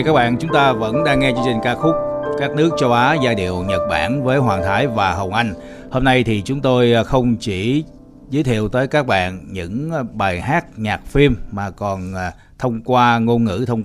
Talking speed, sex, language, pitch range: 210 wpm, male, Vietnamese, 100-130 Hz